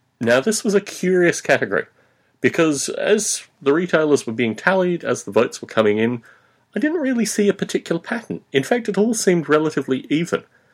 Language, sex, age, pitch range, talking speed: English, male, 40-59, 110-175 Hz, 185 wpm